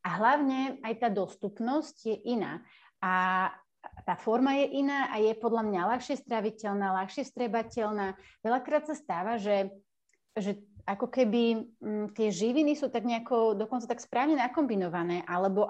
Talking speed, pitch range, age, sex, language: 145 wpm, 195-255 Hz, 30-49, female, Slovak